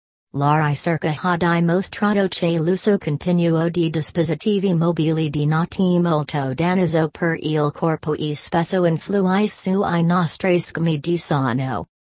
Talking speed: 130 wpm